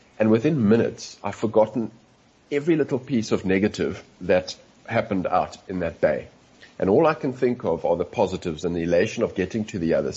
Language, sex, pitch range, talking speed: English, male, 90-115 Hz, 195 wpm